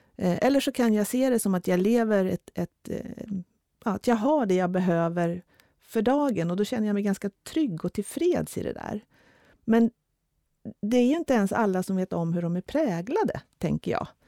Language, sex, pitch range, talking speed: Swedish, female, 180-240 Hz, 205 wpm